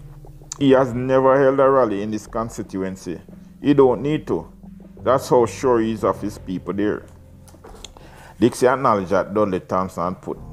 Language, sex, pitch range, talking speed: English, male, 90-120 Hz, 160 wpm